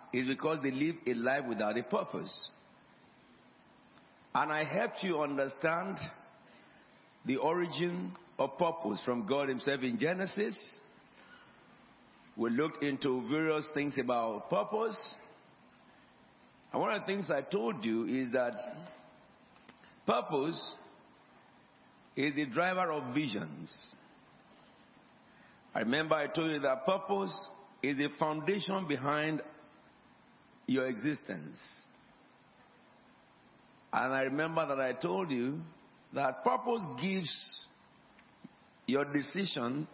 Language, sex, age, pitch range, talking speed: English, male, 50-69, 135-180 Hz, 105 wpm